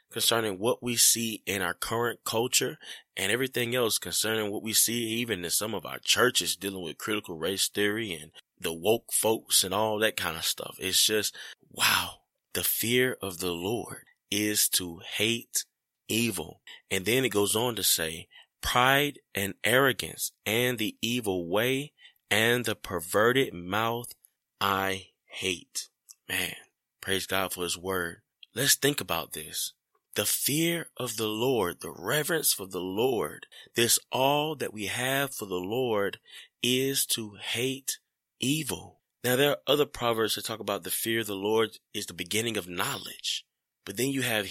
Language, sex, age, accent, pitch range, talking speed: English, male, 20-39, American, 100-125 Hz, 165 wpm